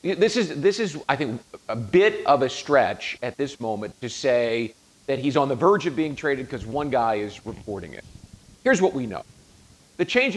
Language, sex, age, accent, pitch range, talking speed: English, male, 50-69, American, 125-180 Hz, 210 wpm